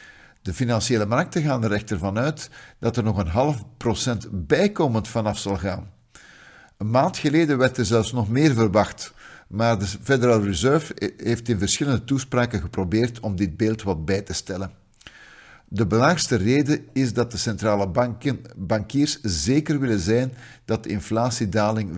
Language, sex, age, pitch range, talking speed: Dutch, male, 50-69, 100-125 Hz, 160 wpm